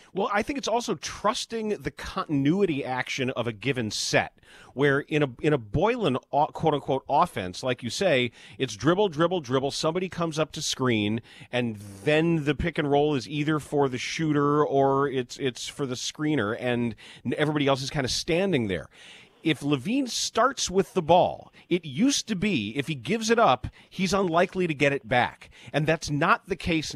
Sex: male